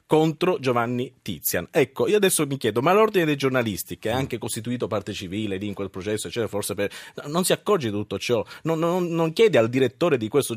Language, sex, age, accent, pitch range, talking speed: Italian, male, 30-49, native, 115-170 Hz, 220 wpm